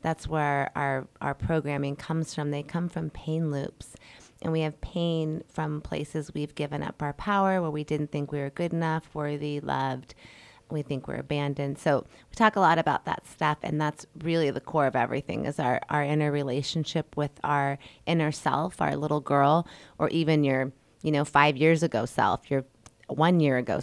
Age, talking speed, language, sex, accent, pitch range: 30-49, 185 wpm, English, female, American, 145-160 Hz